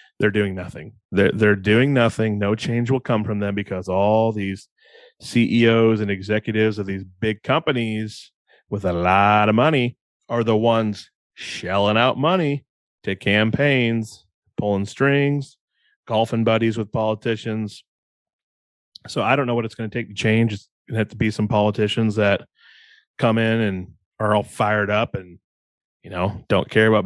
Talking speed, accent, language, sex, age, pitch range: 165 wpm, American, English, male, 30-49, 100-115 Hz